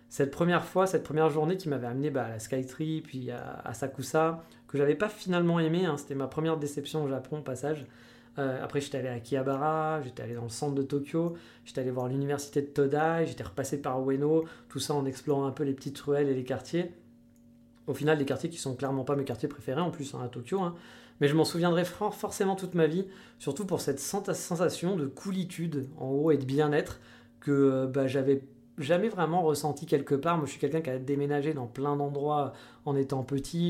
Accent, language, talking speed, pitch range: French, French, 230 wpm, 130-160 Hz